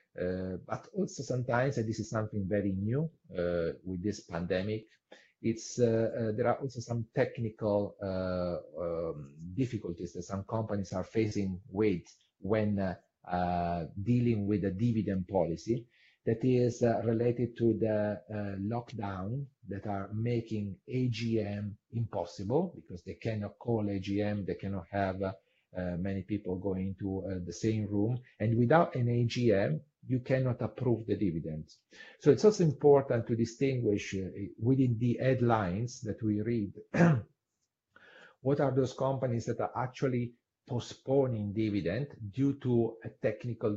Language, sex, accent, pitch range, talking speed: Czech, male, Italian, 100-120 Hz, 145 wpm